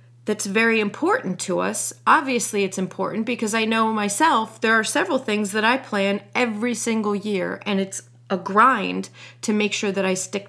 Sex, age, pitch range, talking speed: female, 30-49, 175-220 Hz, 185 wpm